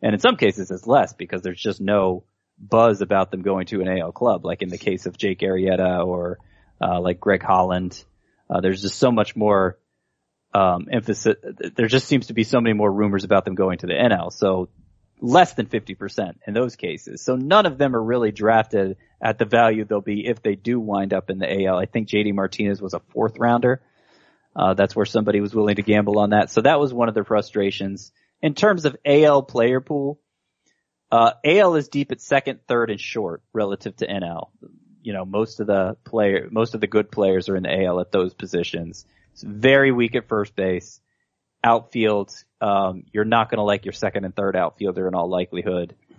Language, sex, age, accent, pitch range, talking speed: English, male, 20-39, American, 95-115 Hz, 210 wpm